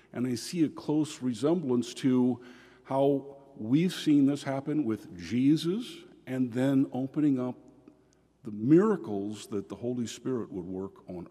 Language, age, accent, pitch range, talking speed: English, 50-69, American, 105-135 Hz, 145 wpm